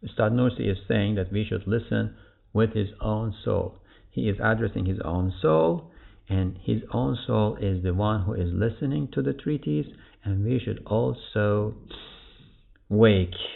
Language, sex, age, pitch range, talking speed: English, male, 50-69, 95-120 Hz, 160 wpm